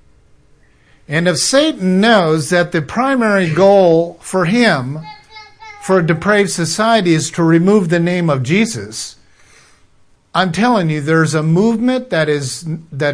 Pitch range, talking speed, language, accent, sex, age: 130-185 Hz, 130 wpm, English, American, male, 50-69